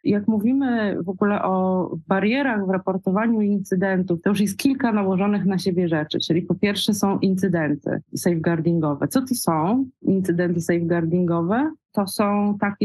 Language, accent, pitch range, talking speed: English, Polish, 185-205 Hz, 145 wpm